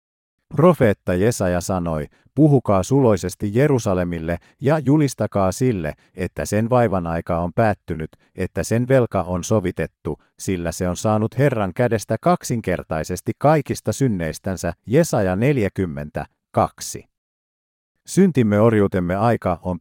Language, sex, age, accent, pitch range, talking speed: Finnish, male, 50-69, native, 90-125 Hz, 105 wpm